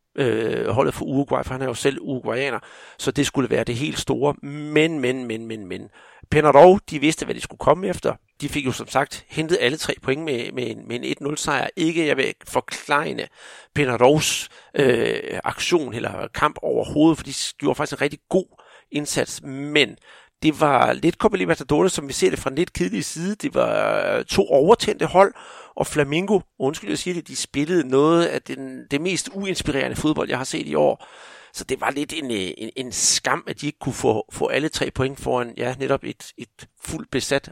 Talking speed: 200 wpm